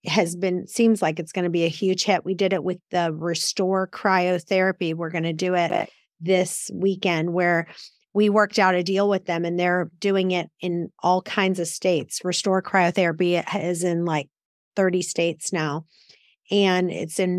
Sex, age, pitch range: female, 30-49, 180-205 Hz